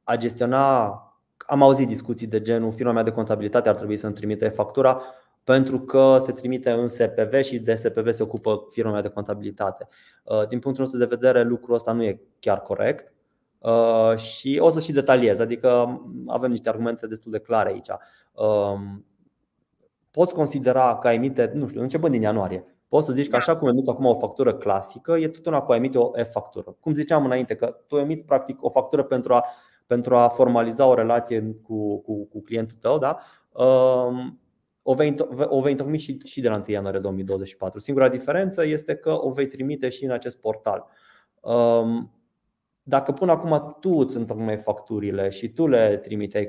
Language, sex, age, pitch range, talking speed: Romanian, male, 20-39, 110-135 Hz, 175 wpm